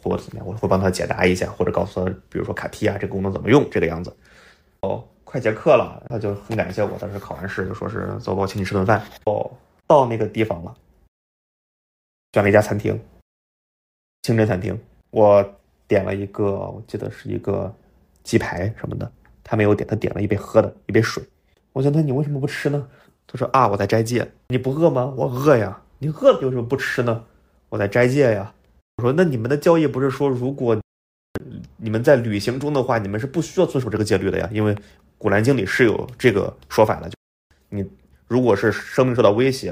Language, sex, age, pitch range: Chinese, male, 20-39, 95-120 Hz